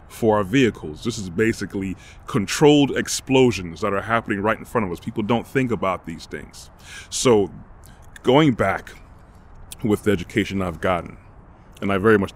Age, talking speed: 30-49, 165 wpm